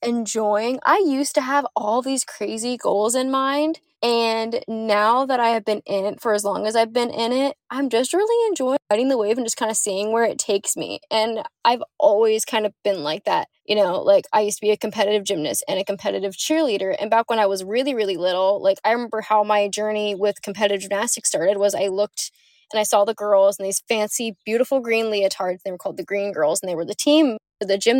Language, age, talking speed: English, 10-29, 240 wpm